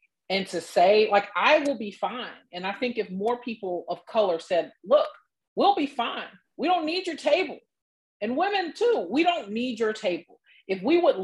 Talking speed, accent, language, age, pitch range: 200 wpm, American, English, 40-59, 165-210 Hz